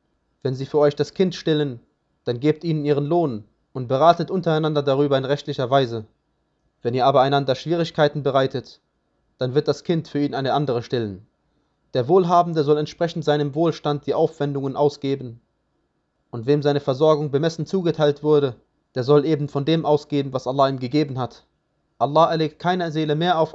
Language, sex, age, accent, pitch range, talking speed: German, male, 20-39, German, 140-160 Hz, 170 wpm